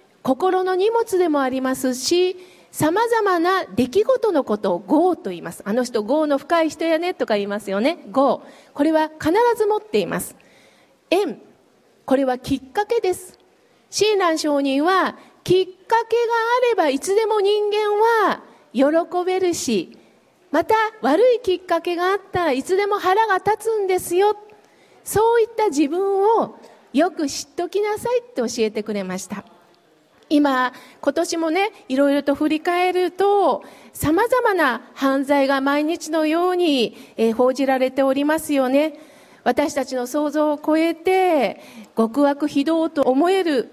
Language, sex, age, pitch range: Japanese, female, 40-59, 260-375 Hz